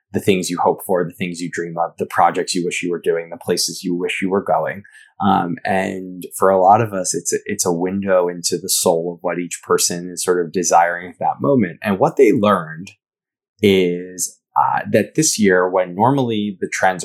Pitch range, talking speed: 90-105 Hz, 220 wpm